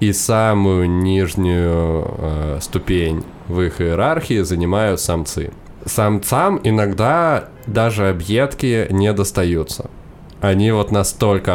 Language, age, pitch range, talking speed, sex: Russian, 20-39, 90-110 Hz, 100 wpm, male